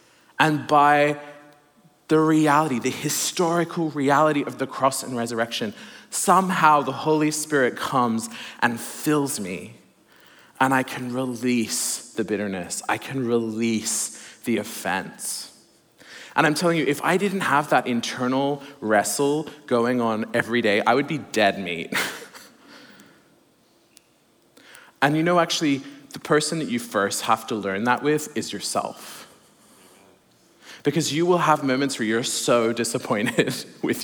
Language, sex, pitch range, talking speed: English, male, 115-150 Hz, 135 wpm